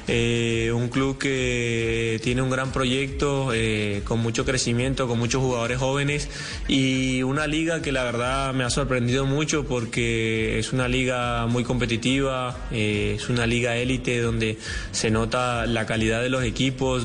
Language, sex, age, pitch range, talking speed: Spanish, male, 20-39, 115-130 Hz, 160 wpm